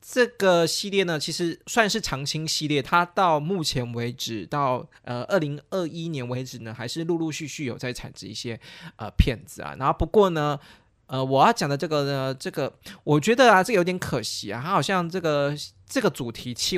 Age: 20-39